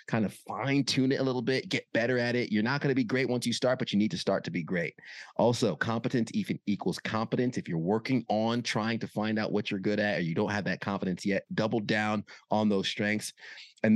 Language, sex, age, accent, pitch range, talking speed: English, male, 30-49, American, 100-120 Hz, 255 wpm